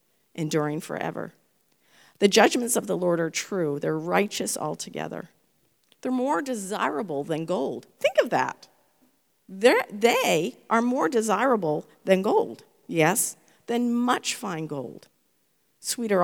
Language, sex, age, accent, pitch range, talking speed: English, female, 50-69, American, 160-220 Hz, 120 wpm